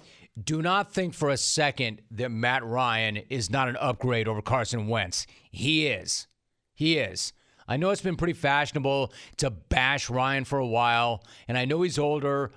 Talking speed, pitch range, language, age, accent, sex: 175 wpm, 125-155 Hz, English, 40-59, American, male